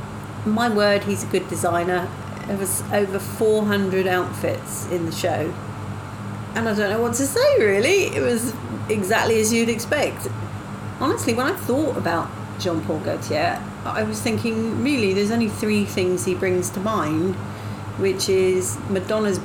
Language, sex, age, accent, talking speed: English, female, 40-59, British, 155 wpm